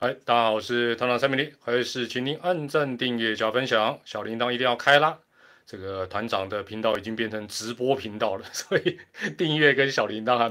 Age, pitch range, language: 30-49, 115-145 Hz, Chinese